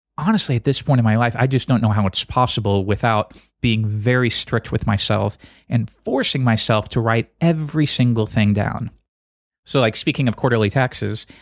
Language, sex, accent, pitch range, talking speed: English, male, American, 110-145 Hz, 185 wpm